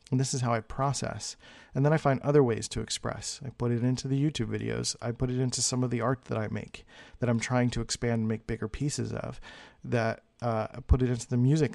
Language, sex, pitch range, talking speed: English, male, 110-130 Hz, 255 wpm